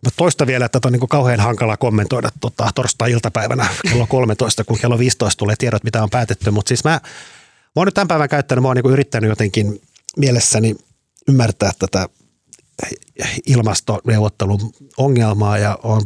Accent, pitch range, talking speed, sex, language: native, 105-130 Hz, 160 wpm, male, Finnish